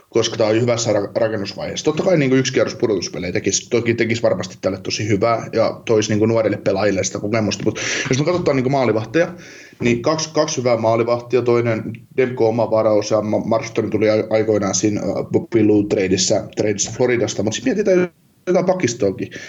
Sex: male